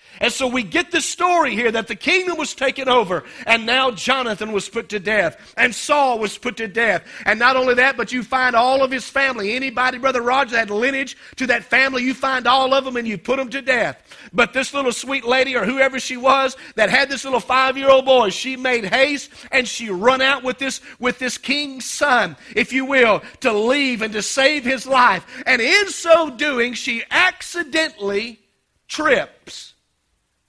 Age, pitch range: 50-69, 240-300 Hz